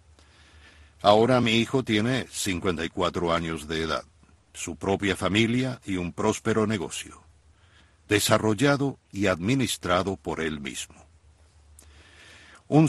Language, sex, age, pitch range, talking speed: Spanish, male, 60-79, 85-105 Hz, 100 wpm